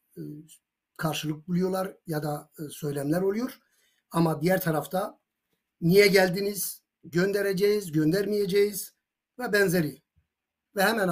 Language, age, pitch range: Turkish, 60-79, 150-190 Hz